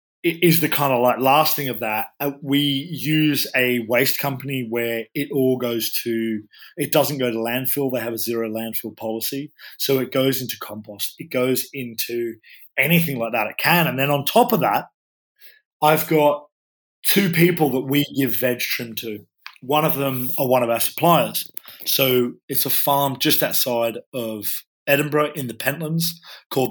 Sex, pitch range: male, 120-150 Hz